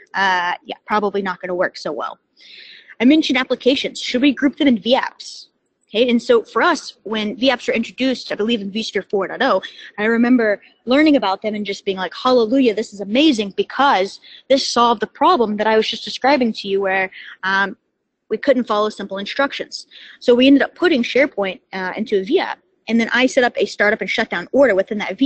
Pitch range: 200-265 Hz